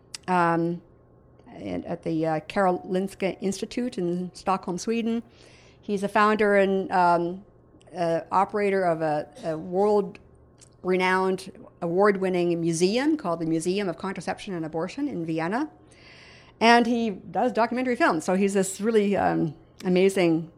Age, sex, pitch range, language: 50-69, female, 170-205 Hz, English